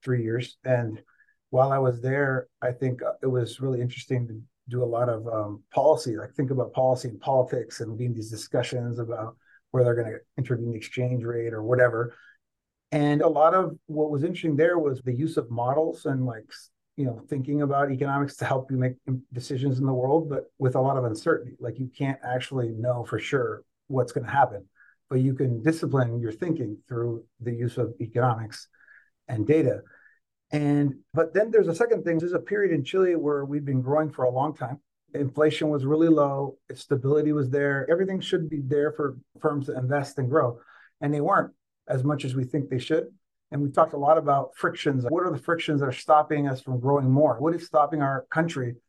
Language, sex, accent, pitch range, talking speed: English, male, American, 125-150 Hz, 205 wpm